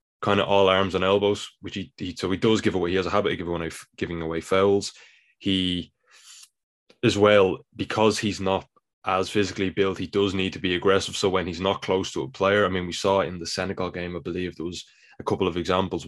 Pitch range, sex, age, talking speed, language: 85-100 Hz, male, 20-39, 245 wpm, English